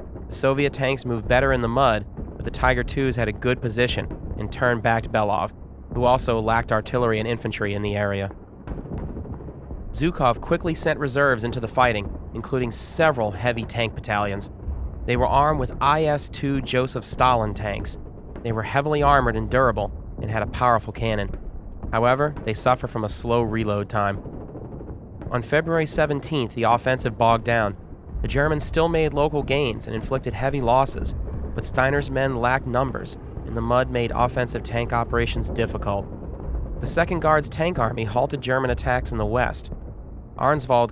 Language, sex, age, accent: English, male, 30-49, American